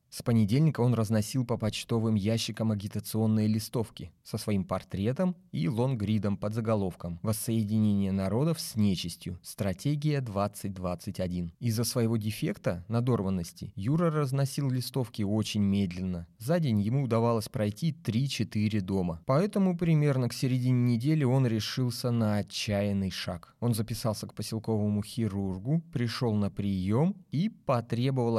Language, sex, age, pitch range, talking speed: Russian, male, 20-39, 100-125 Hz, 125 wpm